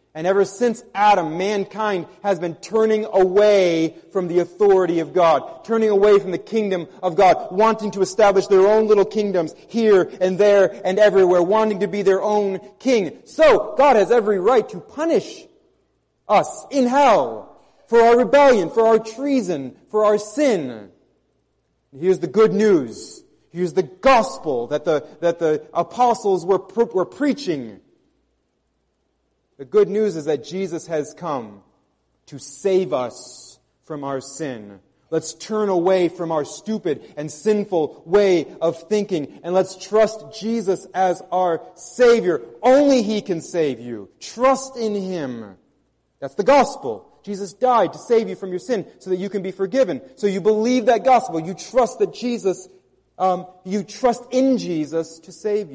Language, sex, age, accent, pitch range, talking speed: English, male, 30-49, American, 170-220 Hz, 160 wpm